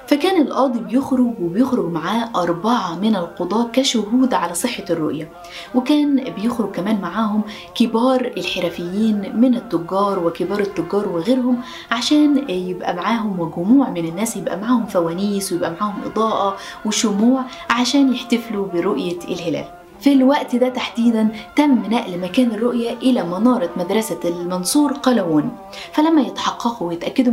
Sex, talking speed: female, 125 wpm